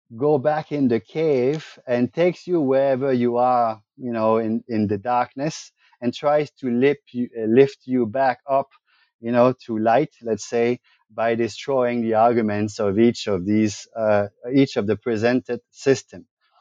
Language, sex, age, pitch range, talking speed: English, male, 30-49, 110-135 Hz, 165 wpm